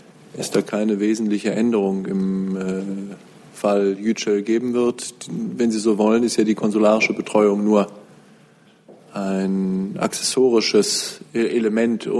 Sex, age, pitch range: male, 20-39, 105-120 Hz